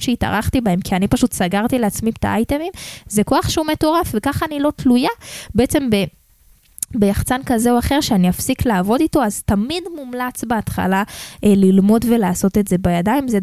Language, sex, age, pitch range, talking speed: Hebrew, female, 10-29, 190-260 Hz, 170 wpm